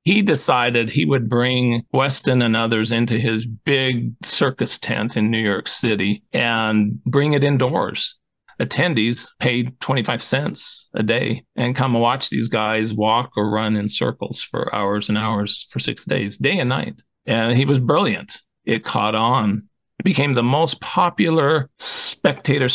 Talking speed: 160 wpm